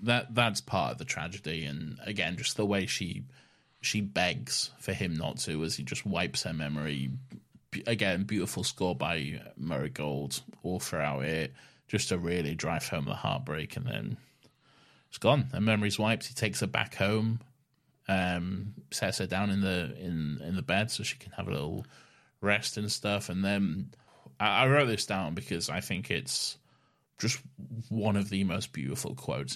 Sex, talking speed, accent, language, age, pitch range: male, 180 wpm, British, English, 20-39, 95-120 Hz